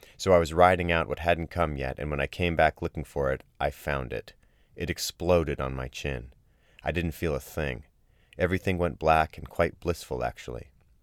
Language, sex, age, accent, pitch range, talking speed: English, male, 30-49, American, 75-85 Hz, 200 wpm